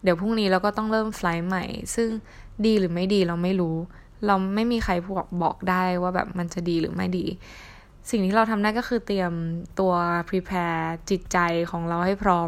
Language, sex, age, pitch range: Thai, female, 10-29, 175-205 Hz